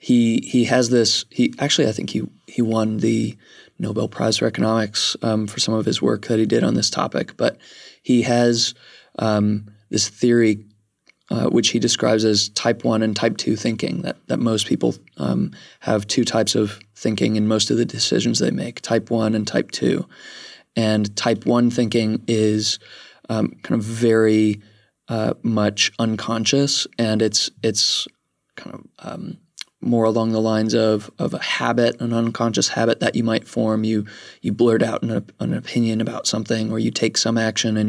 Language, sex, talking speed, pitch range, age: English, male, 180 wpm, 105-115 Hz, 20-39